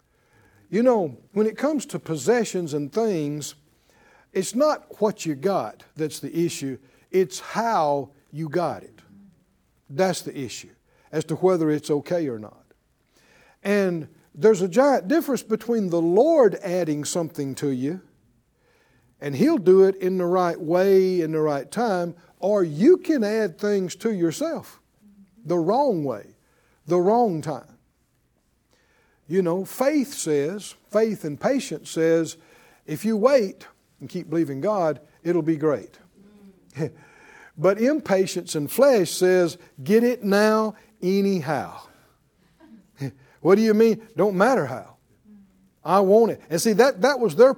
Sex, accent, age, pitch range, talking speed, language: male, American, 60-79, 160-220 Hz, 140 wpm, English